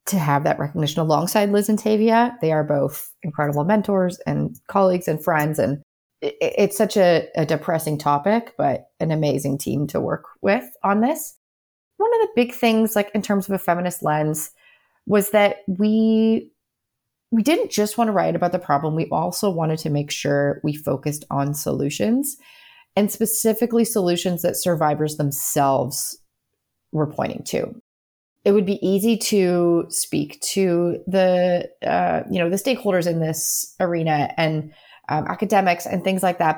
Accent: American